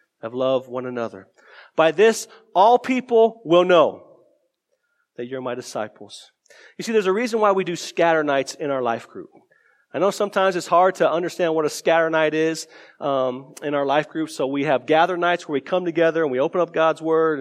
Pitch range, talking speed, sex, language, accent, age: 160-225 Hz, 205 wpm, male, English, American, 40-59